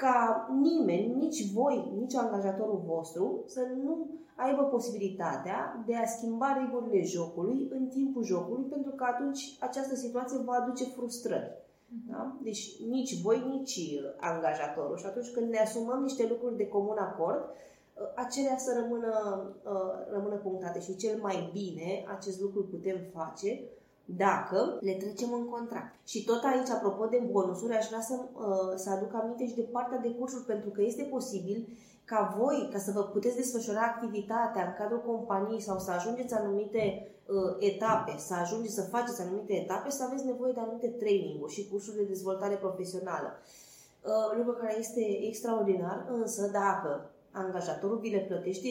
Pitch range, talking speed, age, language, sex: 200-245 Hz, 155 wpm, 20-39, Romanian, female